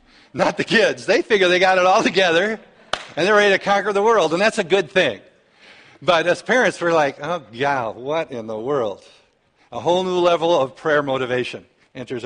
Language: English